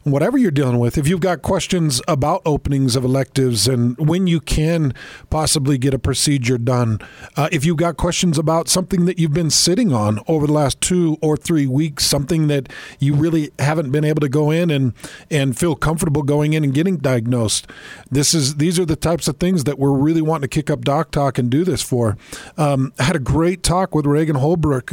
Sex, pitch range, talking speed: male, 140-170 Hz, 215 wpm